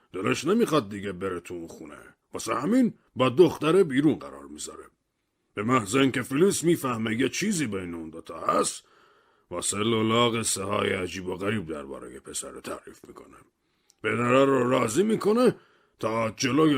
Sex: male